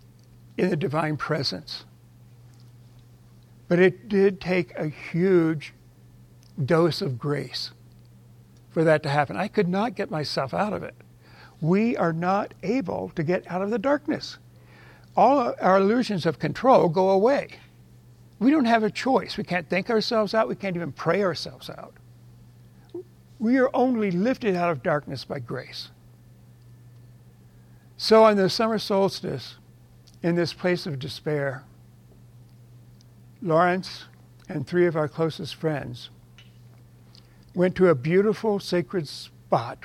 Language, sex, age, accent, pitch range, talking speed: English, male, 60-79, American, 120-185 Hz, 135 wpm